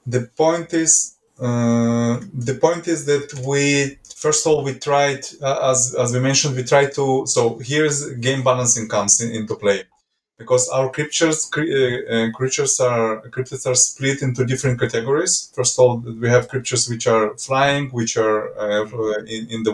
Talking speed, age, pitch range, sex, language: 170 wpm, 20-39, 110-130 Hz, male, English